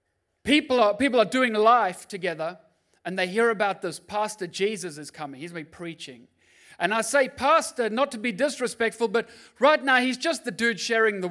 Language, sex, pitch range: English, male, 195-250 Hz